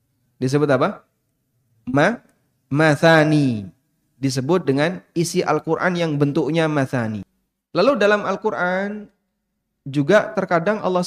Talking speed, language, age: 90 wpm, Indonesian, 20-39